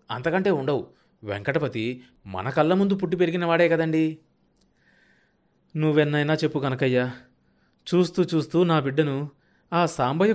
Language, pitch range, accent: Telugu, 115-150 Hz, native